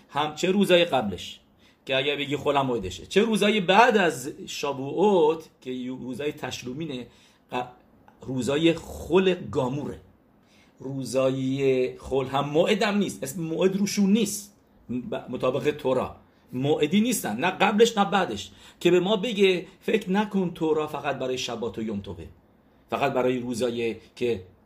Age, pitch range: 50-69, 120-160 Hz